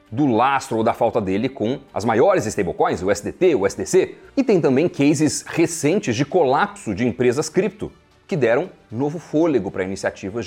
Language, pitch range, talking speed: Portuguese, 125-190 Hz, 170 wpm